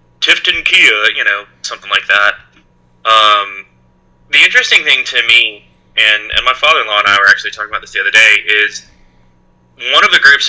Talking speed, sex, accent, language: 175 wpm, male, American, English